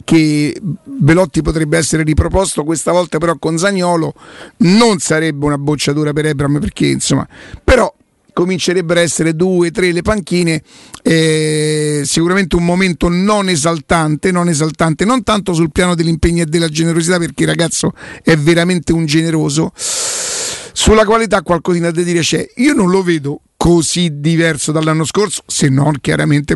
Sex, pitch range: male, 160-190 Hz